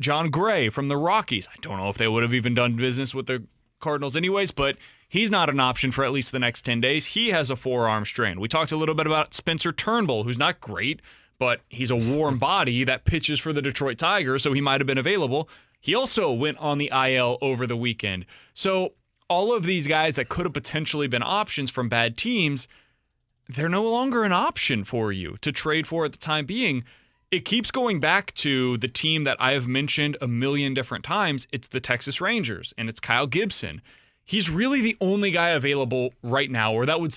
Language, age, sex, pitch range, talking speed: English, 20-39, male, 125-165 Hz, 220 wpm